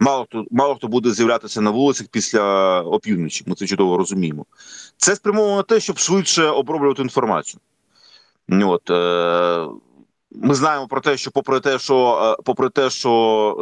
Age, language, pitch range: 40-59, Ukrainian, 115-160 Hz